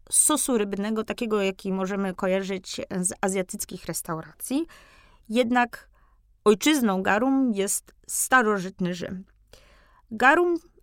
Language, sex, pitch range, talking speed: Polish, female, 195-245 Hz, 90 wpm